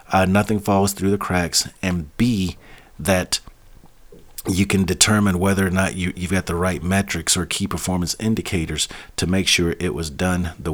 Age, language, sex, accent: 40-59, English, male, American